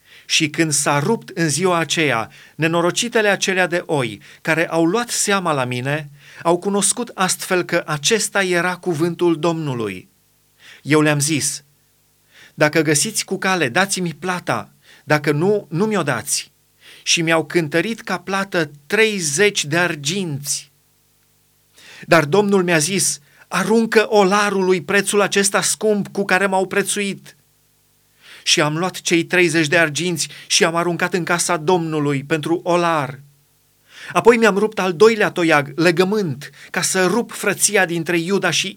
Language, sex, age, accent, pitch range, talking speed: Romanian, male, 30-49, native, 150-190 Hz, 140 wpm